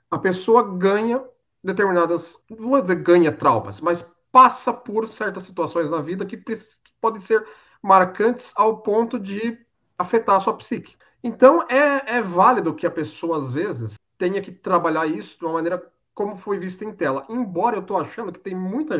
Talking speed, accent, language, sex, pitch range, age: 175 wpm, Brazilian, Portuguese, male, 150-210 Hz, 40-59